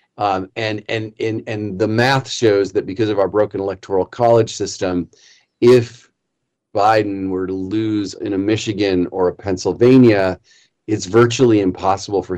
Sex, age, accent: male, 40-59, American